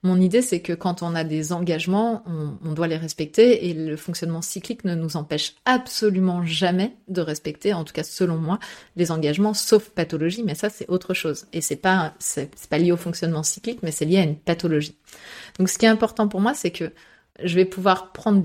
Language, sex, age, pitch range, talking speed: French, female, 30-49, 165-210 Hz, 225 wpm